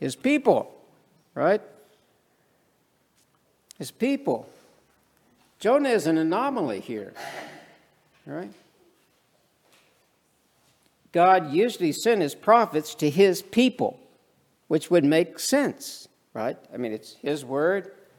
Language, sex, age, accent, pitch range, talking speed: English, male, 60-79, American, 130-175 Hz, 95 wpm